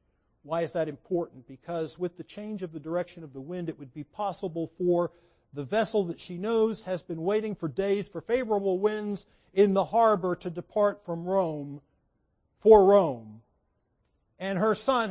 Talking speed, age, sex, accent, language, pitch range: 175 wpm, 50-69, male, American, English, 150-195 Hz